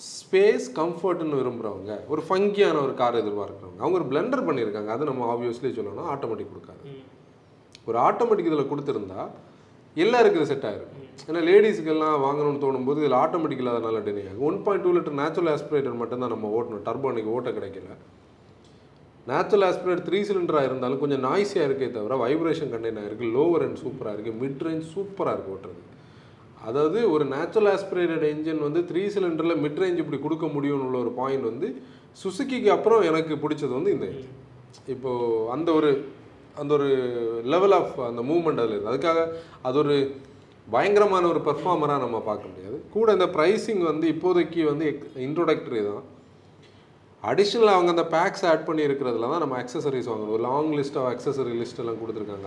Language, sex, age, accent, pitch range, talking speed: Tamil, male, 30-49, native, 125-170 Hz, 155 wpm